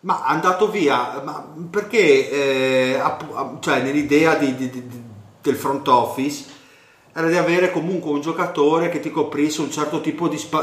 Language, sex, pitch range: Italian, male, 130-145 Hz